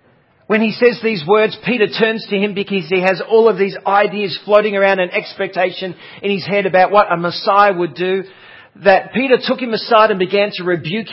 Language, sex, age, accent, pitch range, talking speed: English, male, 40-59, Australian, 160-200 Hz, 205 wpm